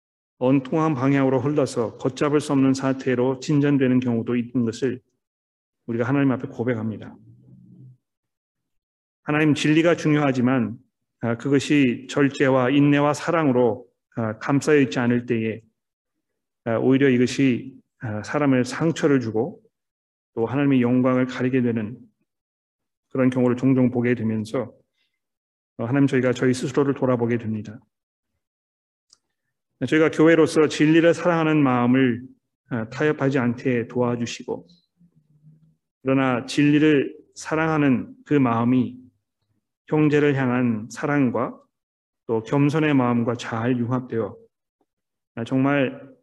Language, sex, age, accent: Korean, male, 40-59, native